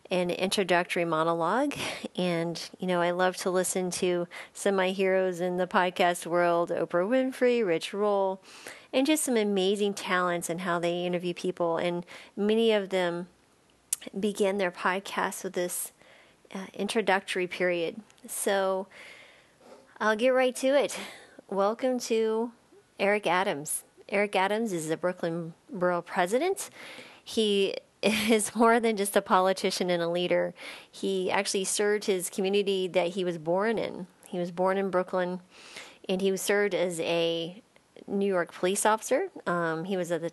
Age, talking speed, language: 30-49, 150 wpm, English